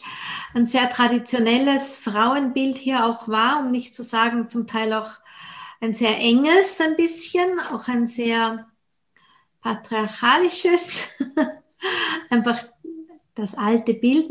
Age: 50-69